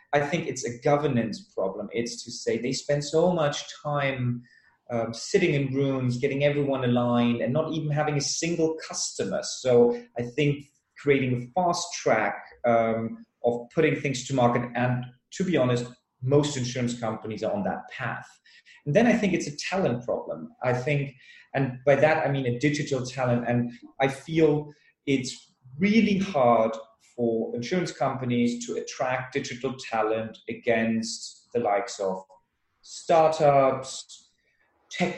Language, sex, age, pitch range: English, male, 30-49, 120-155 Hz